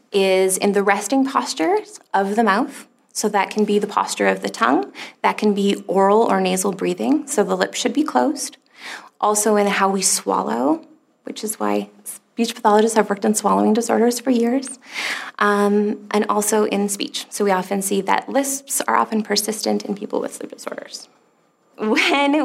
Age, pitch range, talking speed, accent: 20-39, 200-265 Hz, 180 wpm, American